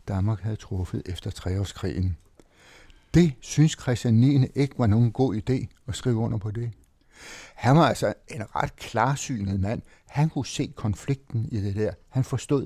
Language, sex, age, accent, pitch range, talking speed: Danish, male, 60-79, native, 95-115 Hz, 165 wpm